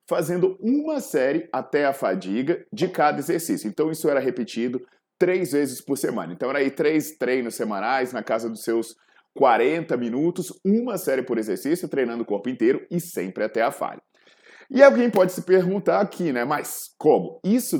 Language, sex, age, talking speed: Portuguese, male, 20-39, 175 wpm